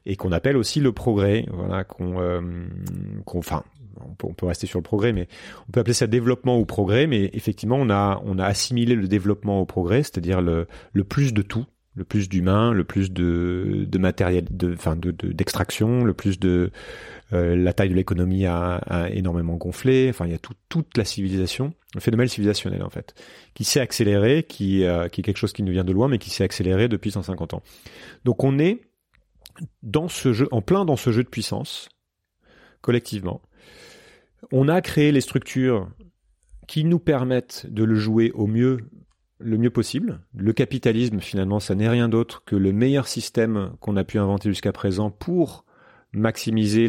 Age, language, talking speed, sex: 30-49, French, 190 wpm, male